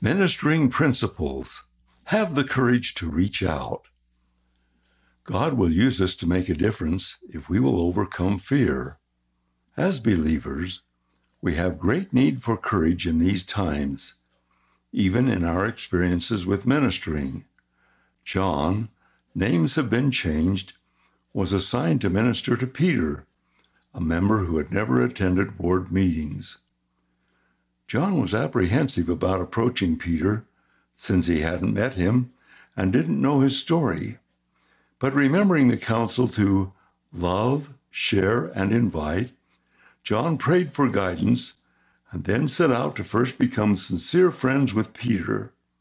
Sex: male